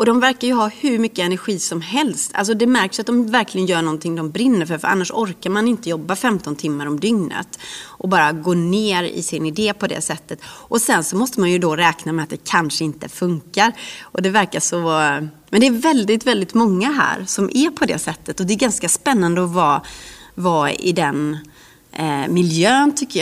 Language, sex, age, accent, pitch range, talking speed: English, female, 30-49, Swedish, 165-215 Hz, 215 wpm